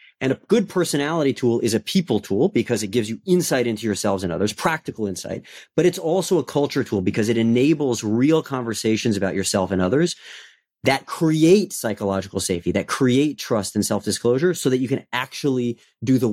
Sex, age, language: male, 30-49, English